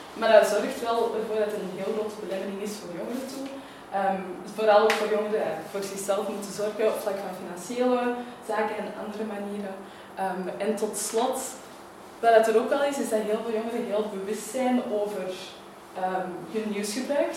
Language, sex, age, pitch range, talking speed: Dutch, female, 20-39, 195-230 Hz, 190 wpm